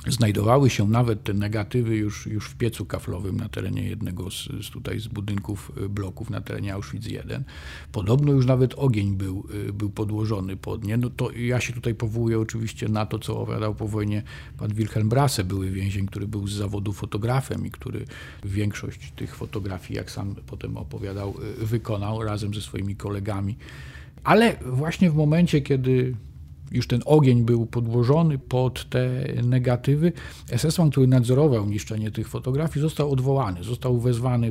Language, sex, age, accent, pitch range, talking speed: Polish, male, 40-59, native, 105-130 Hz, 160 wpm